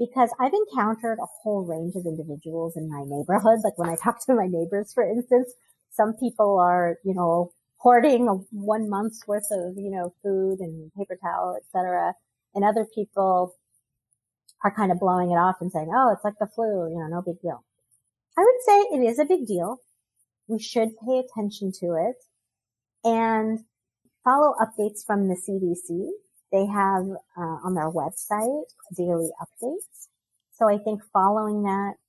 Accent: American